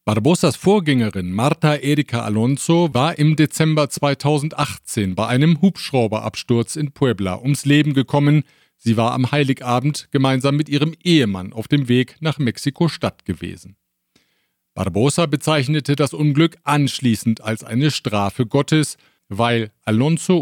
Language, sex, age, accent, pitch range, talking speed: German, male, 50-69, German, 115-150 Hz, 125 wpm